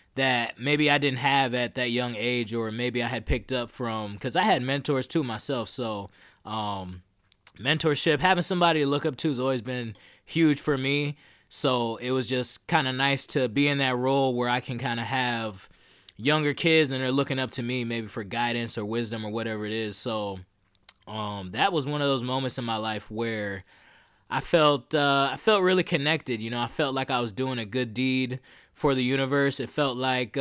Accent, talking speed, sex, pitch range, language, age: American, 215 wpm, male, 120-140 Hz, English, 20-39